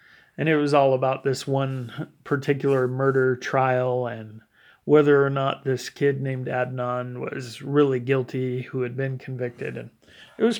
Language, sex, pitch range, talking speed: English, male, 130-145 Hz, 160 wpm